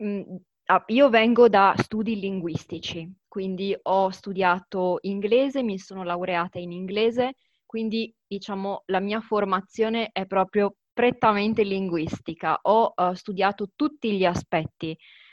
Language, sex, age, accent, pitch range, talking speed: Italian, female, 20-39, native, 180-230 Hz, 115 wpm